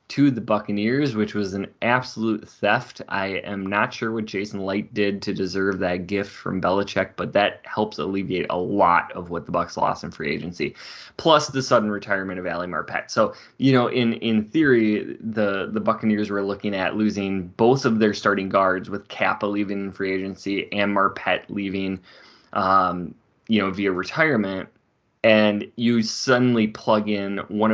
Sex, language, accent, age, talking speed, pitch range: male, English, American, 20-39, 175 wpm, 95-110 Hz